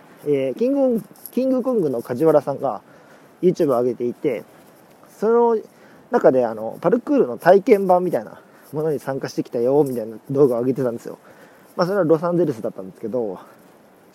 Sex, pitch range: male, 135-205 Hz